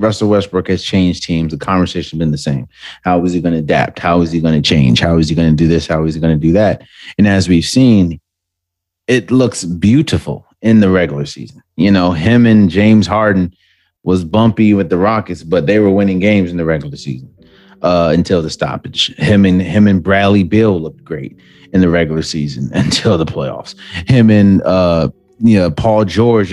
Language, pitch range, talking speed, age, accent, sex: English, 90-110 Hz, 215 wpm, 30-49, American, male